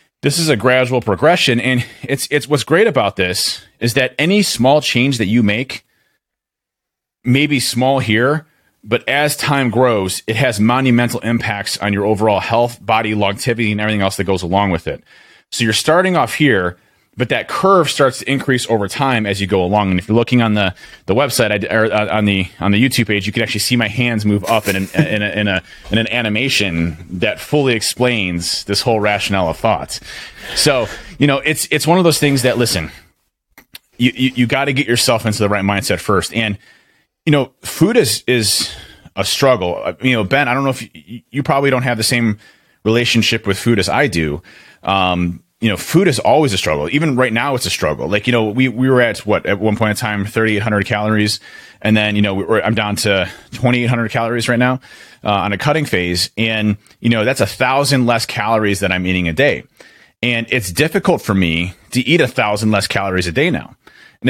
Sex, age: male, 30-49